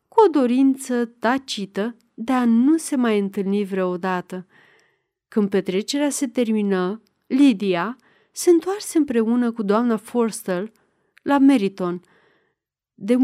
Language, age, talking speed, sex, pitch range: Romanian, 30-49, 110 wpm, female, 205-265 Hz